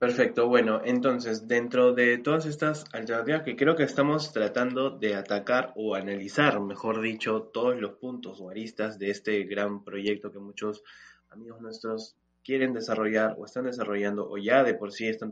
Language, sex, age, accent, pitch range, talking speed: Spanish, male, 20-39, Argentinian, 105-130 Hz, 170 wpm